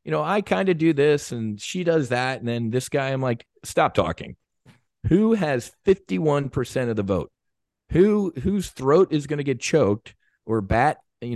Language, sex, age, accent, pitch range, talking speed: English, male, 40-59, American, 100-140 Hz, 190 wpm